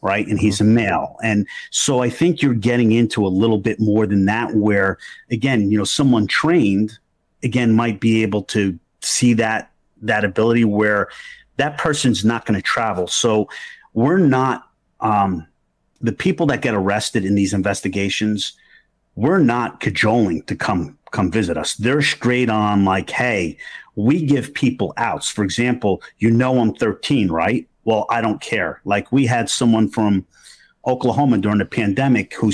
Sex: male